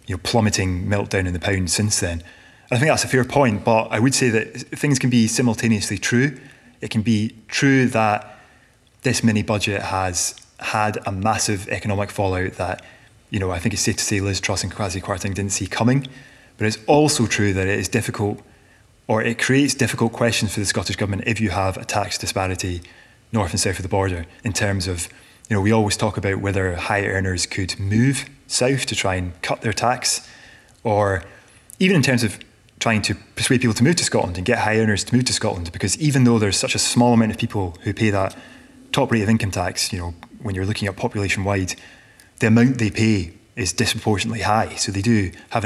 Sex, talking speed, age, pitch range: male, 215 wpm, 20-39, 100-120 Hz